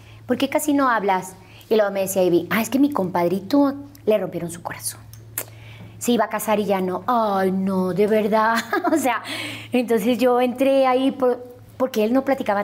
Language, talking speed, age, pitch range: Spanish, 205 wpm, 30-49, 185-260 Hz